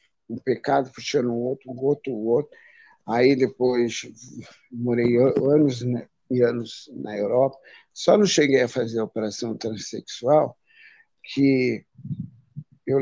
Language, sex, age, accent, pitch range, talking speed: Portuguese, male, 50-69, Brazilian, 120-145 Hz, 130 wpm